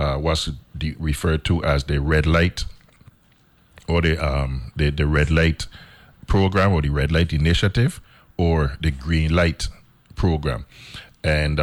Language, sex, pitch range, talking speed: English, male, 75-85 Hz, 140 wpm